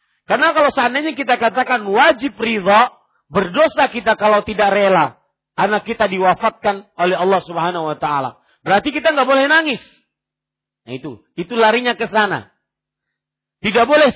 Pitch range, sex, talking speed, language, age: 170-265 Hz, male, 140 wpm, Malay, 40-59